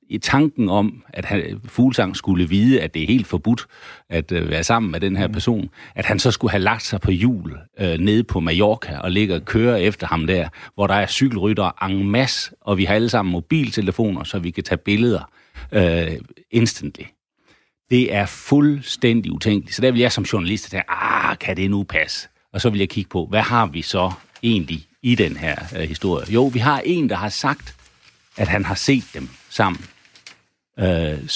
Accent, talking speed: native, 200 wpm